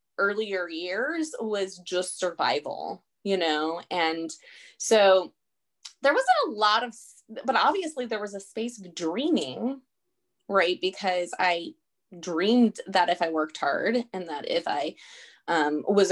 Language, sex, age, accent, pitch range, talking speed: English, female, 20-39, American, 175-245 Hz, 140 wpm